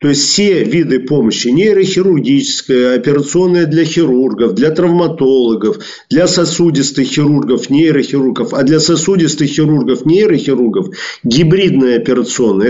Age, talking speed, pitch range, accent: 40-59, 115 wpm, 135-170 Hz, native